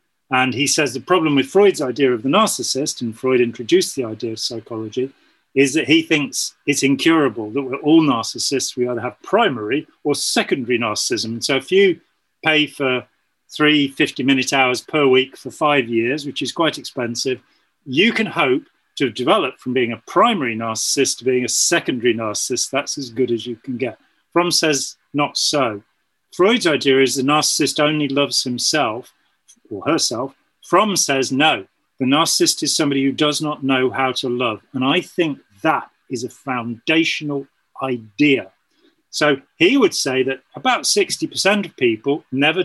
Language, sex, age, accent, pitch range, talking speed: English, male, 40-59, British, 130-170 Hz, 170 wpm